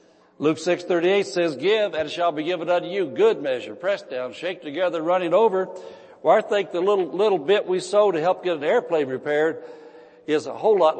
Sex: male